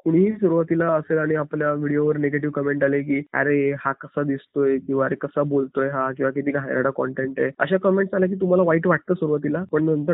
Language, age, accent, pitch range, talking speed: Marathi, 20-39, native, 140-165 Hz, 205 wpm